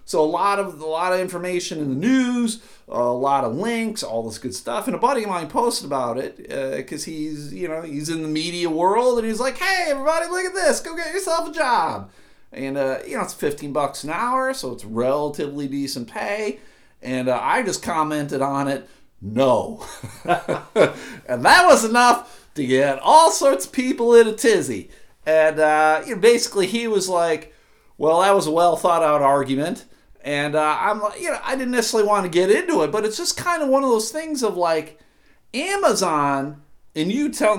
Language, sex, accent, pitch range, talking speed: English, male, American, 155-260 Hz, 210 wpm